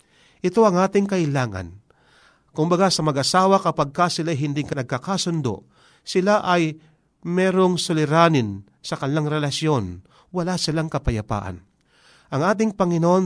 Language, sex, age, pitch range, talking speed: Filipino, male, 40-59, 125-180 Hz, 120 wpm